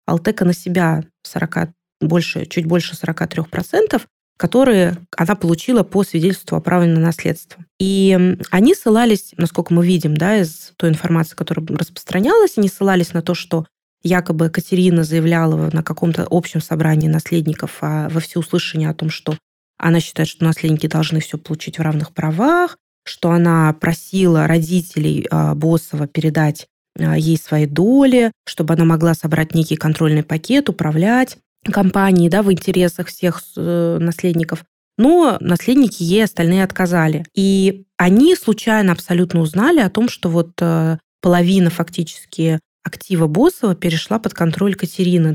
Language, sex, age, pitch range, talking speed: Russian, female, 20-39, 160-190 Hz, 130 wpm